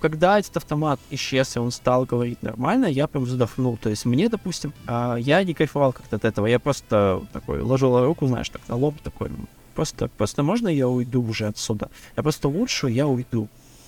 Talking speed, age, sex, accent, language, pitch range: 190 wpm, 20-39, male, native, Russian, 125-150 Hz